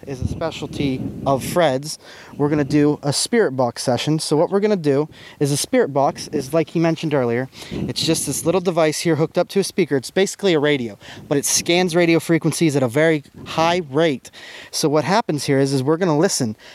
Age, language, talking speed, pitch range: 20-39, English, 215 wpm, 140-220 Hz